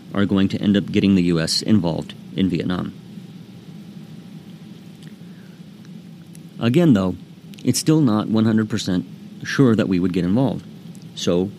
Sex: male